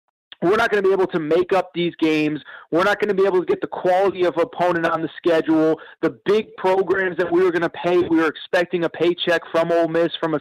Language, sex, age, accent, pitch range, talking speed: English, male, 30-49, American, 160-185 Hz, 260 wpm